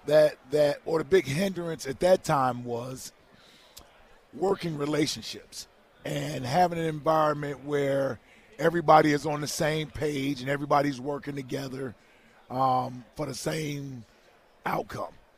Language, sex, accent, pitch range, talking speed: English, male, American, 140-165 Hz, 125 wpm